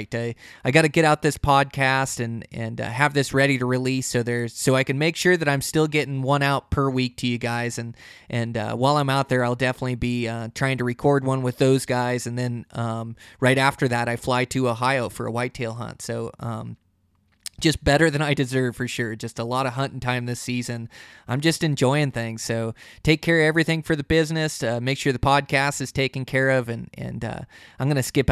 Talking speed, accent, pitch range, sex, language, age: 235 wpm, American, 120-145 Hz, male, English, 20-39